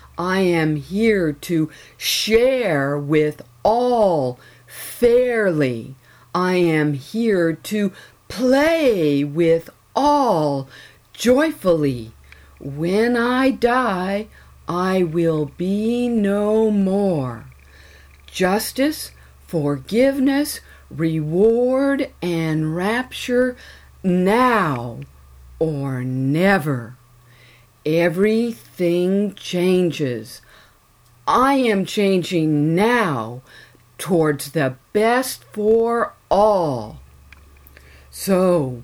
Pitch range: 135-210 Hz